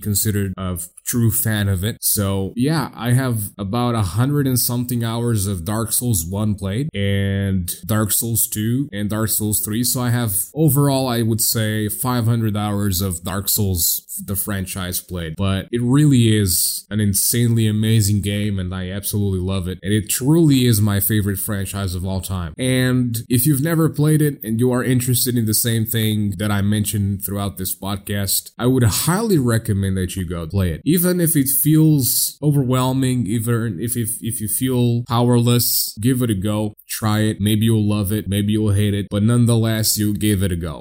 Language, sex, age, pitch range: English, male, 20-39, 100-120 Hz